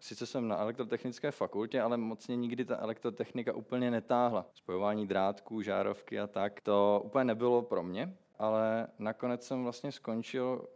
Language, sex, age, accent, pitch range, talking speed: Czech, male, 20-39, native, 105-125 Hz, 150 wpm